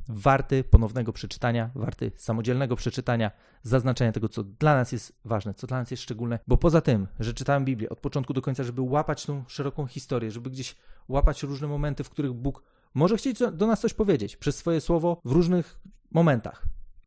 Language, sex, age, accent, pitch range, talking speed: Polish, male, 30-49, native, 115-150 Hz, 185 wpm